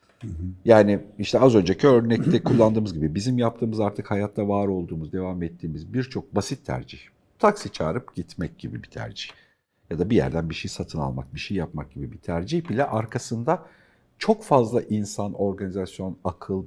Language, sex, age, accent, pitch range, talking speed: Turkish, male, 50-69, native, 80-115 Hz, 160 wpm